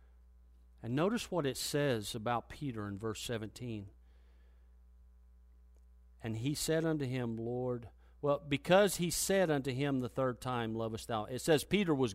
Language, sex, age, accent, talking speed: English, male, 50-69, American, 155 wpm